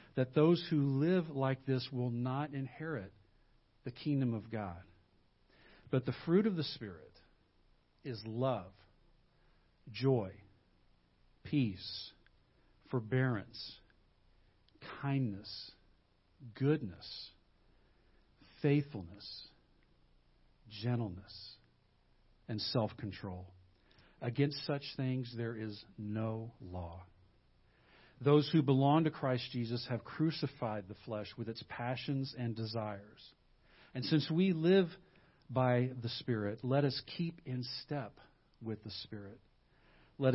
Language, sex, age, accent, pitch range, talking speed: English, male, 50-69, American, 105-135 Hz, 100 wpm